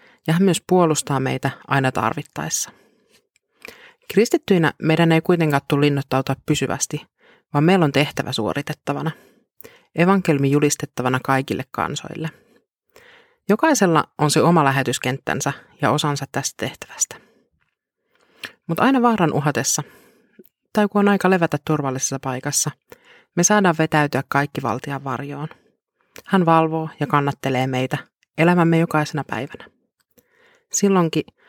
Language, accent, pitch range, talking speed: Finnish, native, 140-175 Hz, 105 wpm